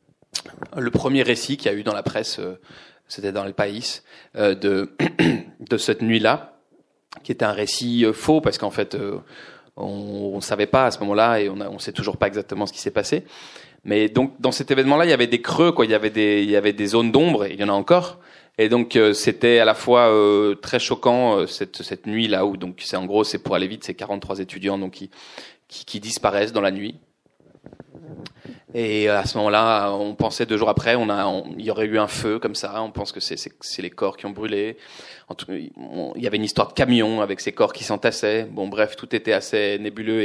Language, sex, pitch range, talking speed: French, male, 100-115 Hz, 230 wpm